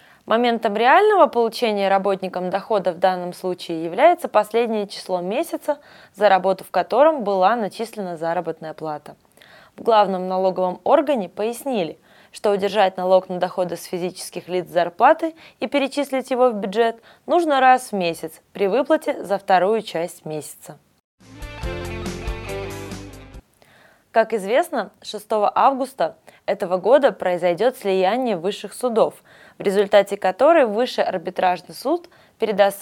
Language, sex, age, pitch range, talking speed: Russian, female, 20-39, 180-235 Hz, 120 wpm